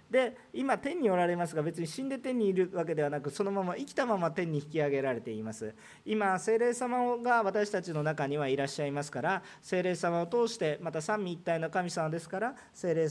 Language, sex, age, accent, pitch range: Japanese, male, 40-59, native, 165-240 Hz